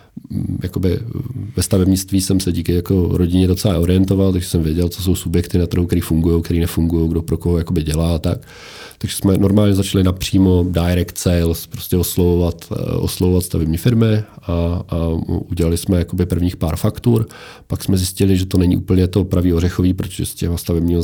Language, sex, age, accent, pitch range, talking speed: Czech, male, 40-59, native, 80-95 Hz, 180 wpm